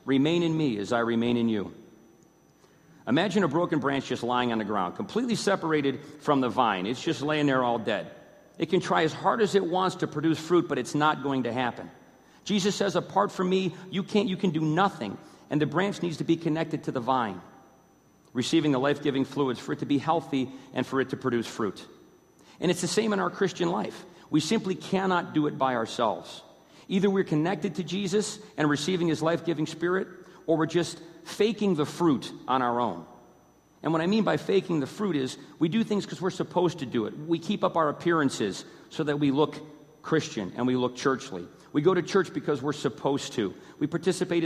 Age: 40-59